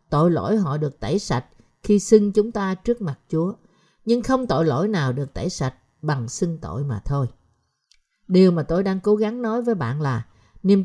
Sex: female